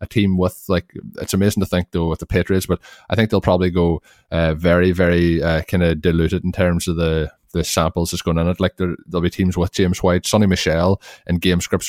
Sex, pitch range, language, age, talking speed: male, 85-90 Hz, English, 20-39, 240 wpm